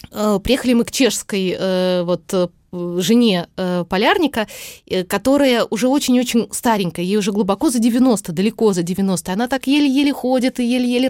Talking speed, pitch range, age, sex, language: 135 wpm, 205-255 Hz, 20-39, female, Russian